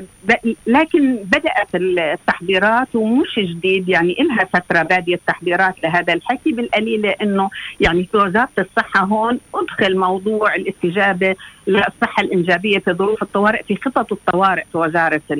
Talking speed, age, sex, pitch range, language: 125 wpm, 50-69, female, 190-255 Hz, Arabic